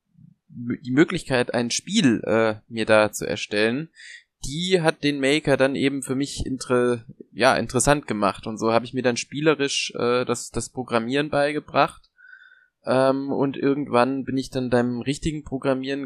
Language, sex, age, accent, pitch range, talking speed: German, male, 20-39, German, 120-140 Hz, 150 wpm